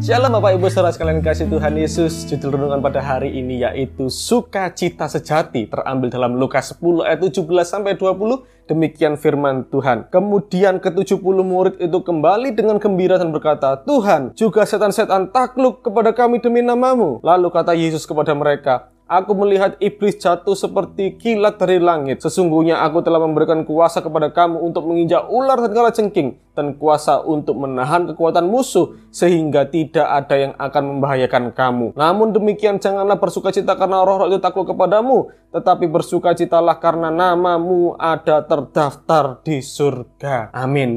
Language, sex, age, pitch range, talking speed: Indonesian, male, 20-39, 145-200 Hz, 150 wpm